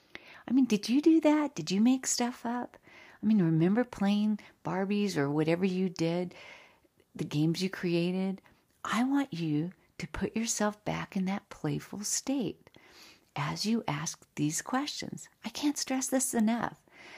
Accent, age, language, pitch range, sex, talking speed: American, 50-69, English, 170-235 Hz, female, 155 wpm